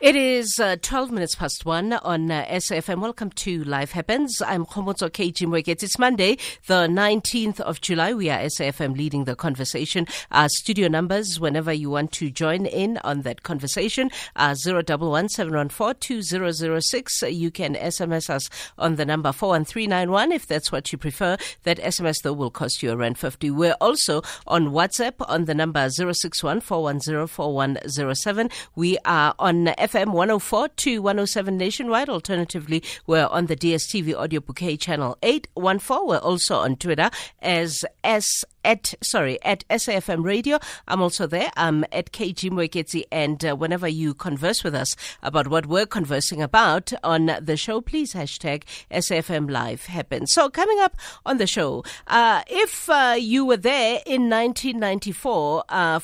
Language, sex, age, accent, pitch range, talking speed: English, female, 50-69, South African, 155-205 Hz, 165 wpm